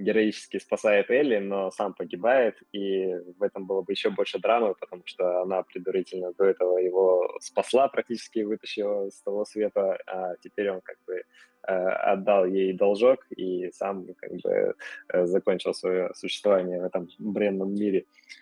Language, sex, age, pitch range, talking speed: Russian, male, 20-39, 95-115 Hz, 150 wpm